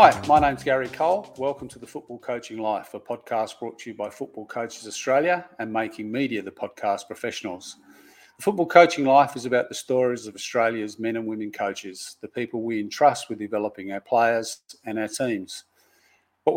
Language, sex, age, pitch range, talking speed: English, male, 40-59, 110-140 Hz, 190 wpm